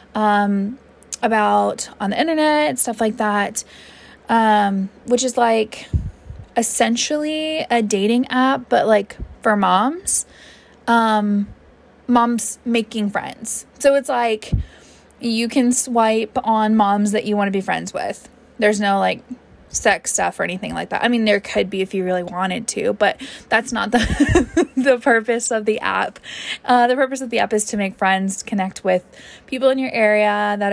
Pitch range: 200-245 Hz